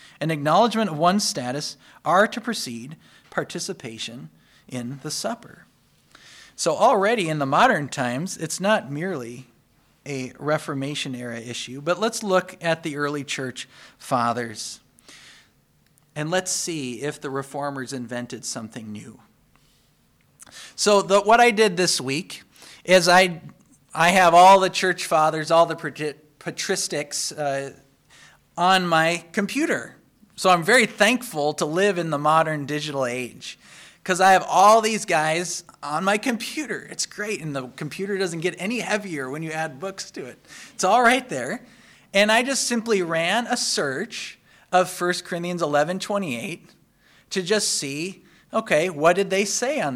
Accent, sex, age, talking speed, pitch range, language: American, male, 40-59, 145 wpm, 145-200 Hz, English